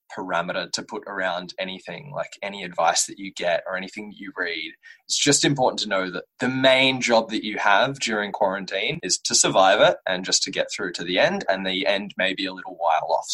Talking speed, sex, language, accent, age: 225 wpm, male, English, Australian, 20-39